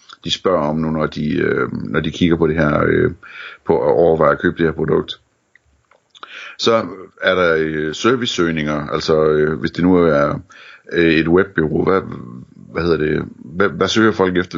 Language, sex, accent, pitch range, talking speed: Danish, male, native, 75-85 Hz, 175 wpm